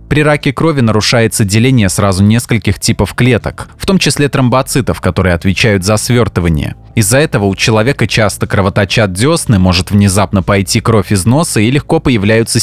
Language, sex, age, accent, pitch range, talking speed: Russian, male, 20-39, native, 100-135 Hz, 155 wpm